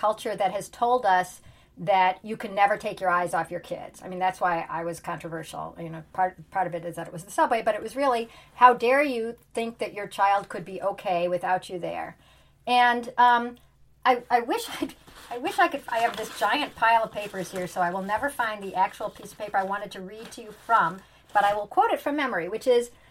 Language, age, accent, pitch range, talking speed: English, 40-59, American, 190-280 Hz, 245 wpm